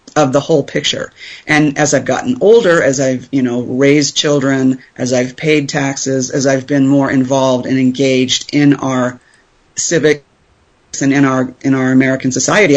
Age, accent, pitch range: 30-49, American, 135-165 Hz